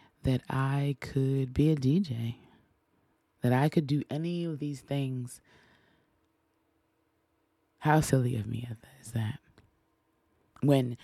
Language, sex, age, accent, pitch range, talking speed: English, female, 20-39, American, 120-150 Hz, 115 wpm